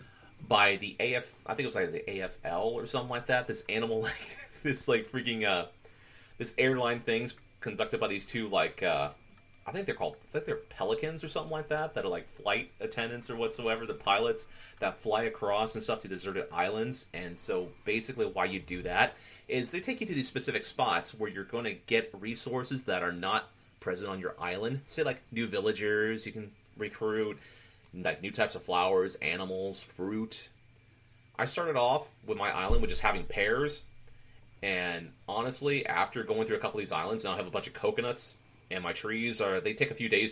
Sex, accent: male, American